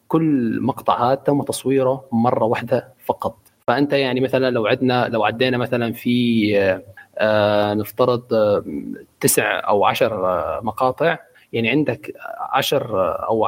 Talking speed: 130 wpm